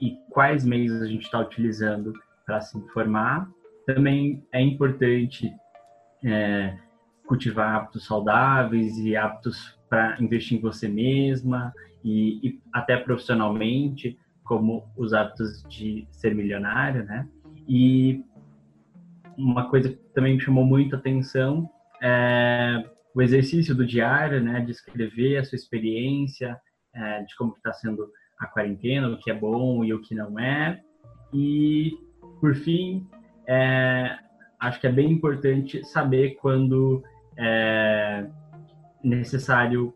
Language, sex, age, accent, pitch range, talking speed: Portuguese, male, 20-39, Brazilian, 115-135 Hz, 125 wpm